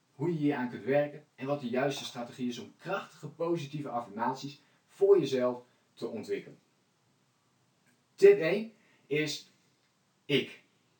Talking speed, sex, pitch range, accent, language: 130 wpm, male, 125-155 Hz, Dutch, Dutch